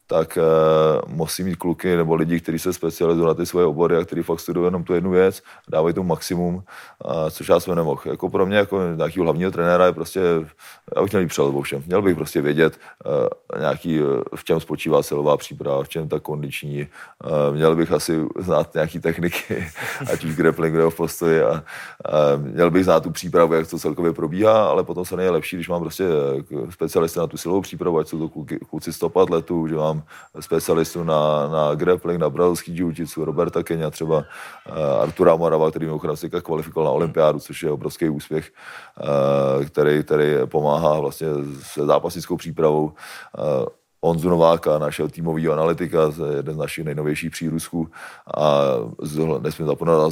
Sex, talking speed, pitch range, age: male, 170 wpm, 80-85 Hz, 30-49